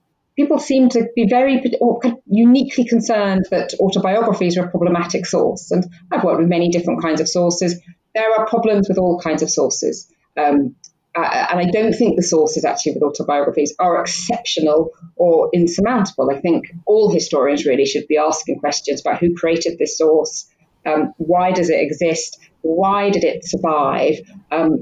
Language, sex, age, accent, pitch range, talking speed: English, female, 30-49, British, 160-205 Hz, 165 wpm